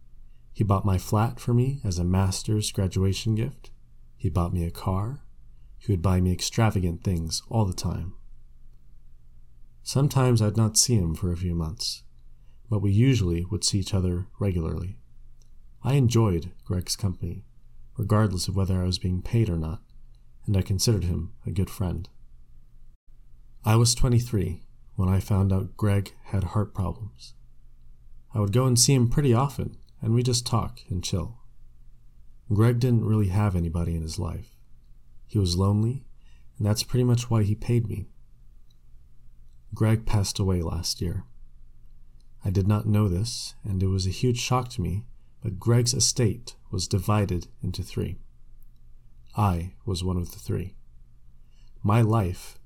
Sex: male